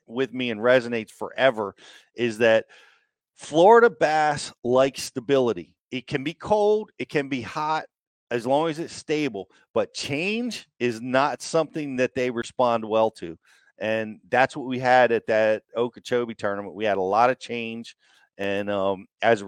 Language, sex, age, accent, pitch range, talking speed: English, male, 40-59, American, 115-135 Hz, 165 wpm